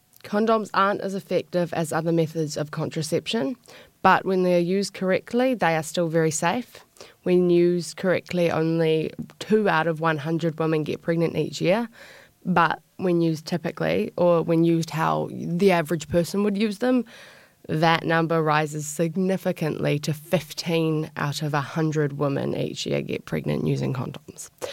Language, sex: English, female